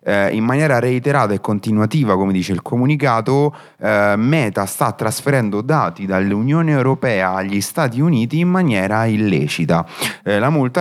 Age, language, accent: 30-49, Italian, native